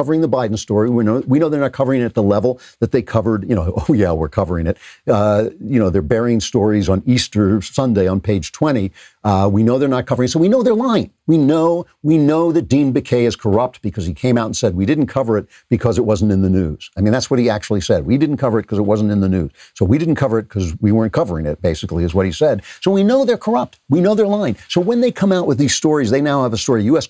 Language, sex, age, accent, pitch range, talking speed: English, male, 50-69, American, 105-140 Hz, 280 wpm